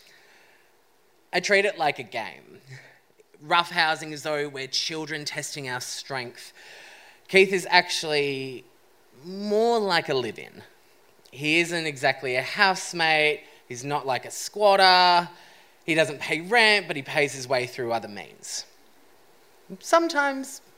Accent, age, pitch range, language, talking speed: Australian, 20-39, 125-195 Hz, English, 130 wpm